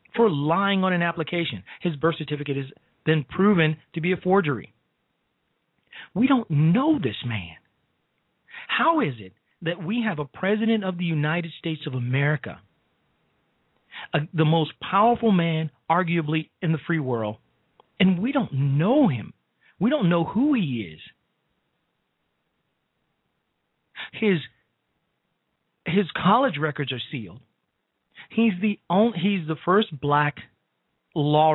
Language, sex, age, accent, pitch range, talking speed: English, male, 40-59, American, 135-195 Hz, 130 wpm